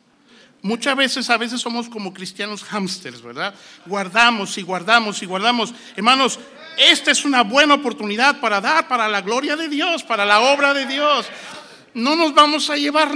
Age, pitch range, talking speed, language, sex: 60-79, 205-270 Hz, 170 wpm, English, male